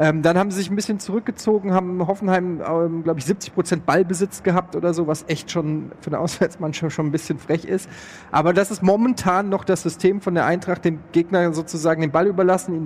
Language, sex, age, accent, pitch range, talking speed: German, male, 30-49, German, 155-190 Hz, 205 wpm